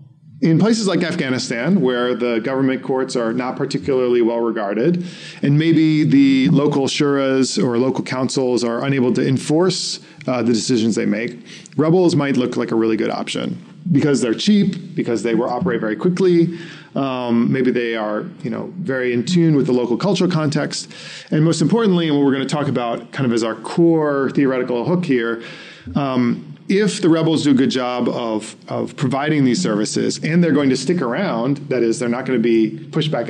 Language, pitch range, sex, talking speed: English, 120-160 Hz, male, 185 wpm